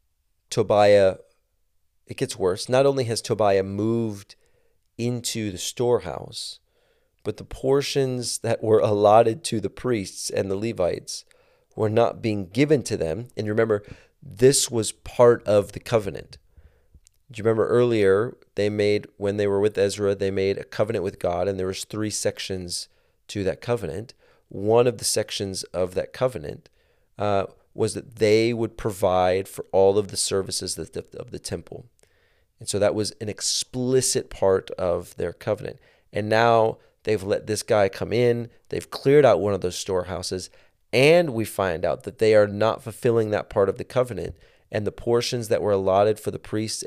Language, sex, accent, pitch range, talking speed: English, male, American, 95-115 Hz, 170 wpm